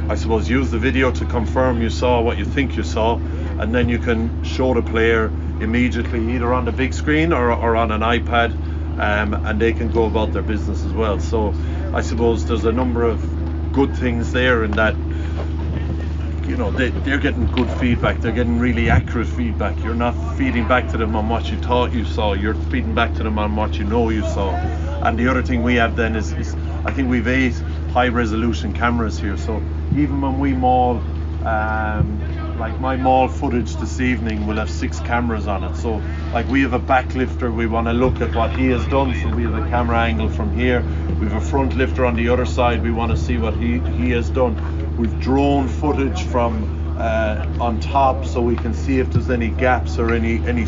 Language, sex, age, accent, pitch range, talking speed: English, male, 30-49, Irish, 75-80 Hz, 220 wpm